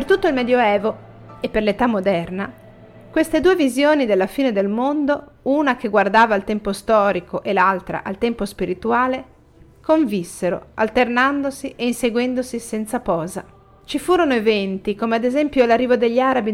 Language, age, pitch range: Italian, 40-59, 215-265 Hz